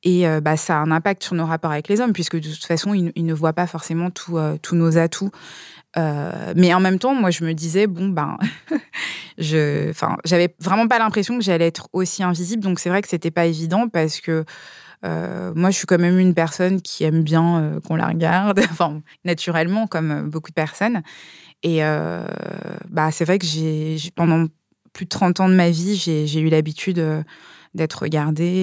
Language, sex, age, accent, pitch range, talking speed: French, female, 20-39, French, 160-185 Hz, 210 wpm